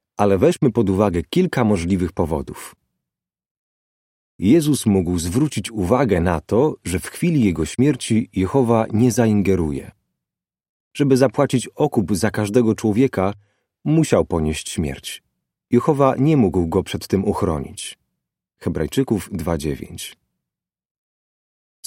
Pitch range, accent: 95-130 Hz, native